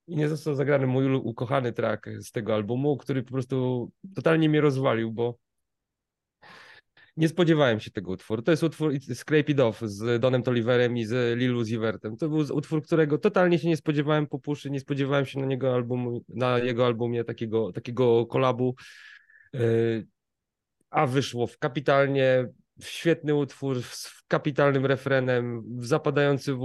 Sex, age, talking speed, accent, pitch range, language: male, 30-49, 155 wpm, native, 120-150 Hz, Polish